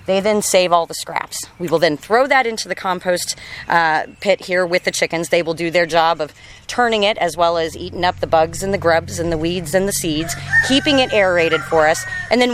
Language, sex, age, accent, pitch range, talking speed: English, female, 30-49, American, 150-185 Hz, 245 wpm